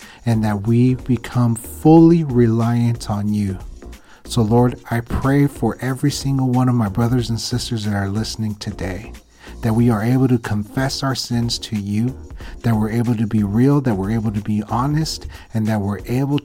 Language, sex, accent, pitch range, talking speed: English, male, American, 105-125 Hz, 185 wpm